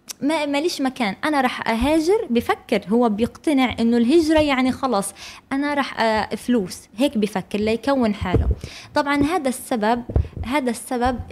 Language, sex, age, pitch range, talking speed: Arabic, female, 20-39, 205-275 Hz, 135 wpm